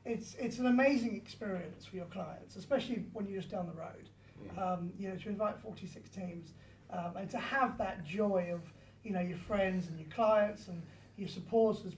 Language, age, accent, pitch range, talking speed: English, 30-49, British, 170-210 Hz, 195 wpm